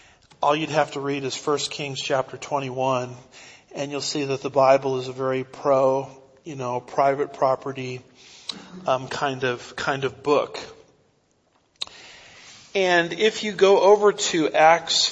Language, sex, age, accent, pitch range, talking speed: English, male, 40-59, American, 135-160 Hz, 145 wpm